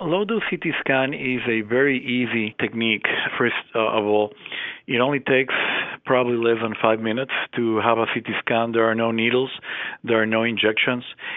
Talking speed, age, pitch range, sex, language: 170 wpm, 40-59, 110-125 Hz, male, English